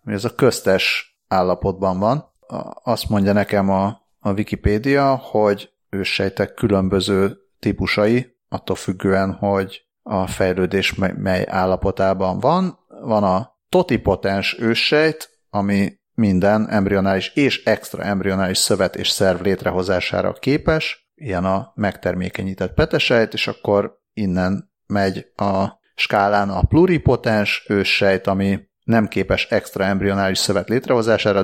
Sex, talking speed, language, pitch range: male, 110 wpm, Hungarian, 95-115 Hz